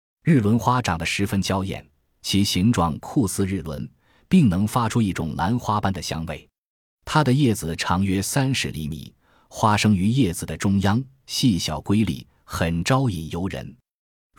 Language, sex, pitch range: Chinese, male, 85-115 Hz